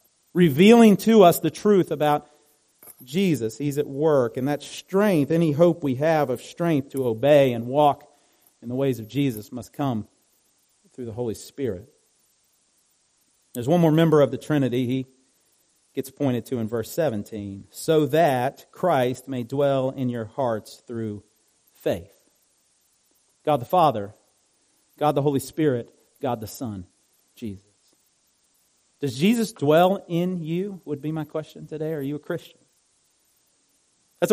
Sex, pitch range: male, 125-165 Hz